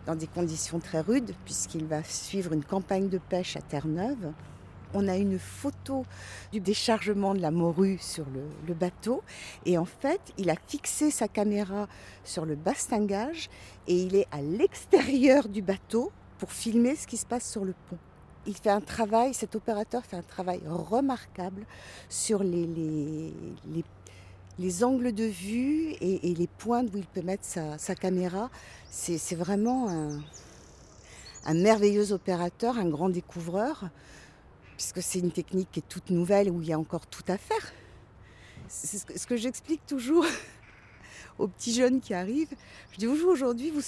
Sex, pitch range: female, 175-240 Hz